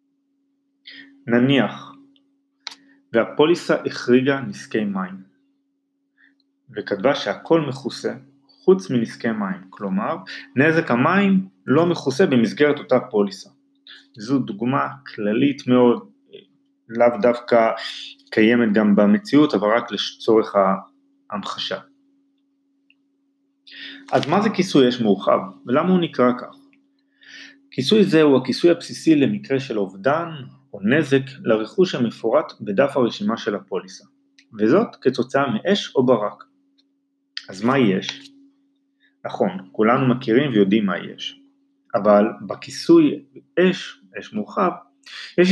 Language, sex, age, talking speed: Hebrew, male, 30-49, 100 wpm